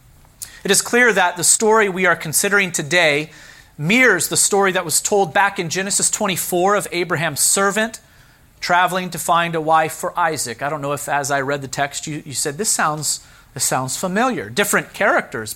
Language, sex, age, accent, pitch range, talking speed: English, male, 40-59, American, 145-185 Hz, 185 wpm